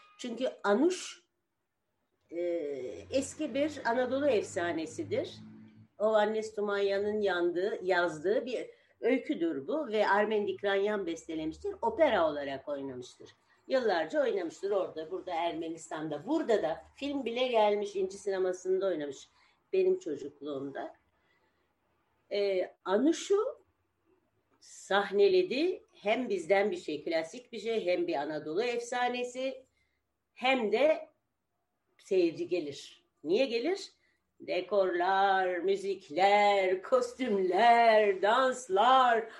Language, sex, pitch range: Turkish, female, 190-295 Hz